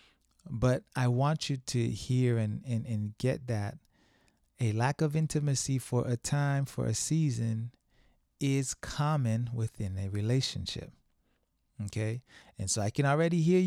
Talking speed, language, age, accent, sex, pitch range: 145 wpm, English, 30-49, American, male, 105-130 Hz